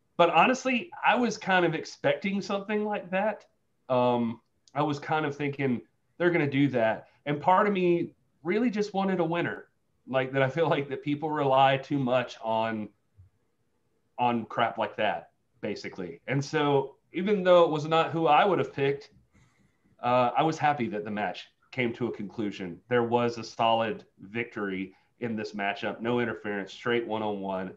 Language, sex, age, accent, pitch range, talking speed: English, male, 30-49, American, 115-150 Hz, 175 wpm